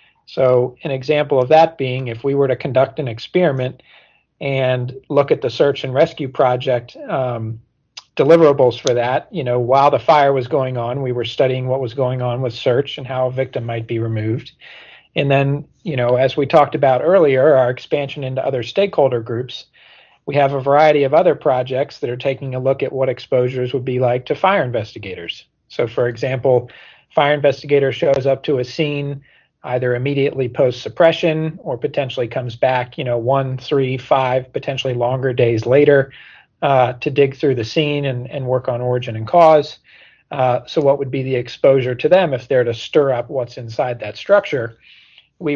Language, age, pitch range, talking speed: English, 40-59, 125-145 Hz, 190 wpm